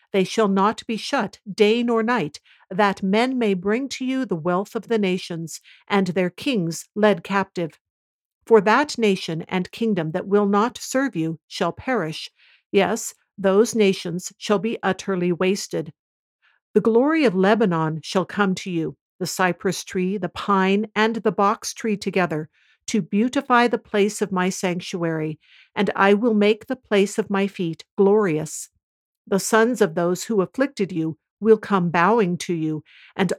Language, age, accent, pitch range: English, 50-69, American, 180-220 Hz